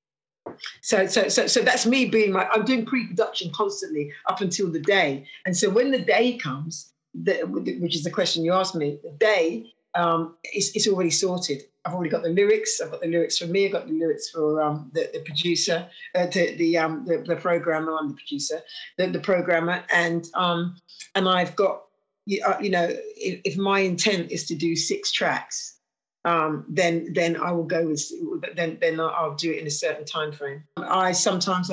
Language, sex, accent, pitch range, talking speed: English, female, British, 160-190 Hz, 195 wpm